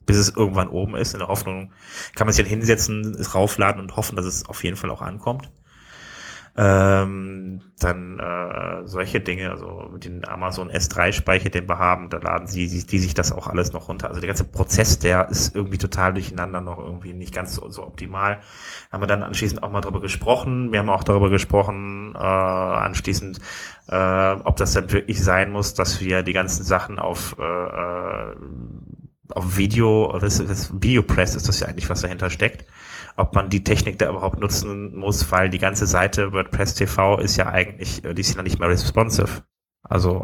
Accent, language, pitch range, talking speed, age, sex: German, German, 90-100 Hz, 190 wpm, 20-39, male